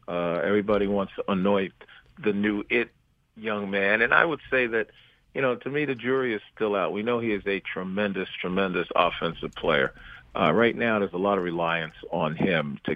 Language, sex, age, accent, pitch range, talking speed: English, male, 50-69, American, 90-110 Hz, 205 wpm